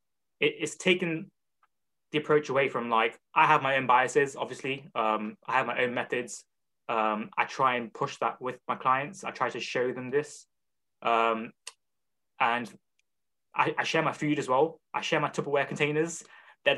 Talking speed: 175 wpm